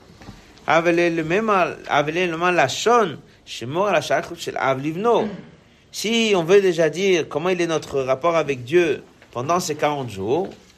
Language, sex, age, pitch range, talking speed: French, male, 60-79, 140-190 Hz, 120 wpm